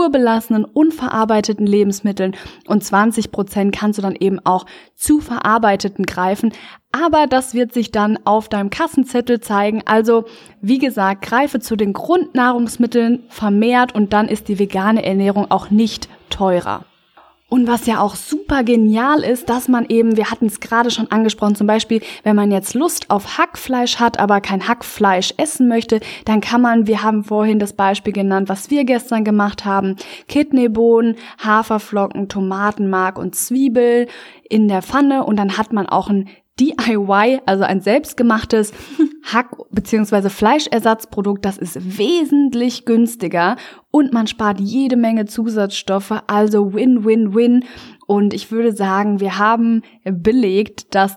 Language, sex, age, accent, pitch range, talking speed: German, female, 20-39, German, 200-240 Hz, 145 wpm